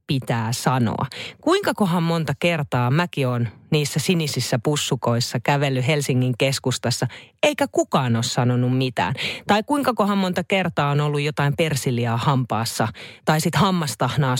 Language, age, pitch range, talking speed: Finnish, 30-49, 130-200 Hz, 125 wpm